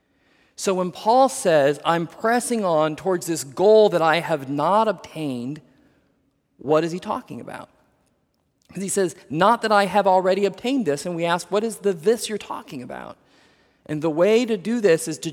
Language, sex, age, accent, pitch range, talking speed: English, male, 40-59, American, 155-210 Hz, 190 wpm